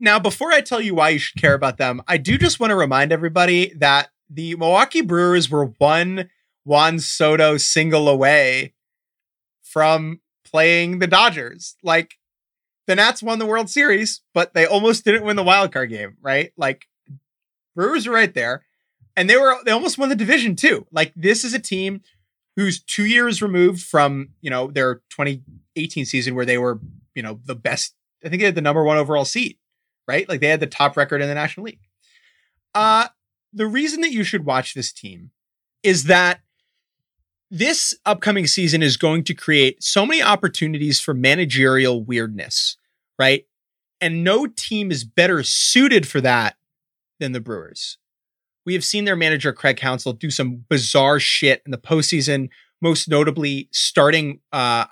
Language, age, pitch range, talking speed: English, 30-49, 135-195 Hz, 170 wpm